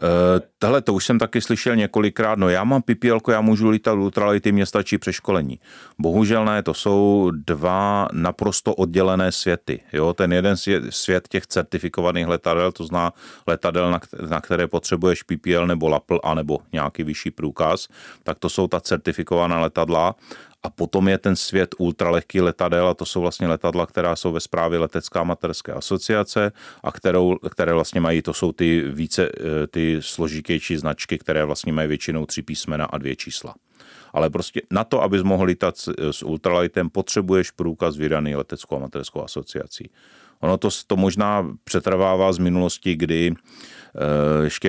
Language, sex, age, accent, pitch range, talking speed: Czech, male, 30-49, native, 75-95 Hz, 160 wpm